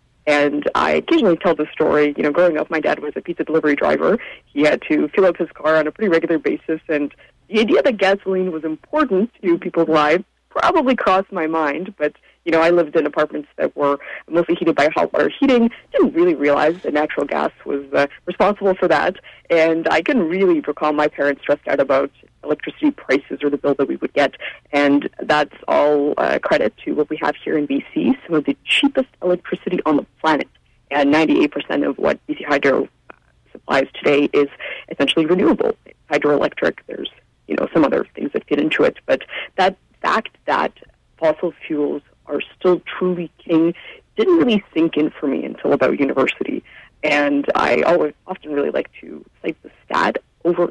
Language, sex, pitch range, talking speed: English, female, 150-190 Hz, 190 wpm